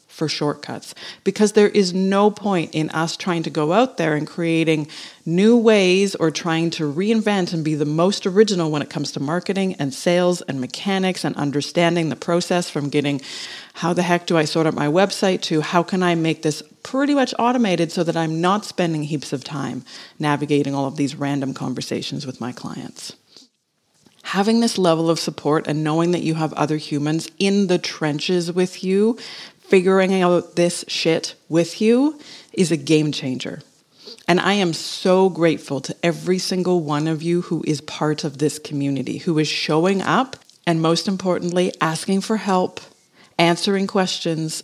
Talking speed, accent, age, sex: 180 wpm, American, 40-59, female